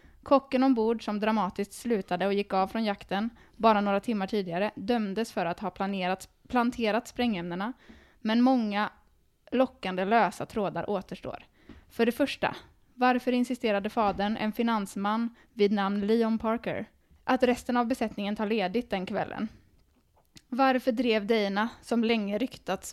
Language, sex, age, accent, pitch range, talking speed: Swedish, female, 10-29, native, 195-230 Hz, 135 wpm